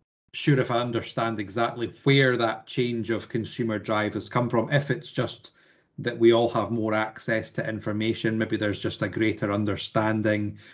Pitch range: 100-115 Hz